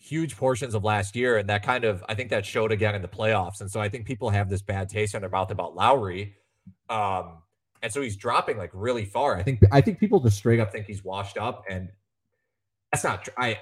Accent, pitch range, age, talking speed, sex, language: American, 100-130 Hz, 30-49, 245 wpm, male, English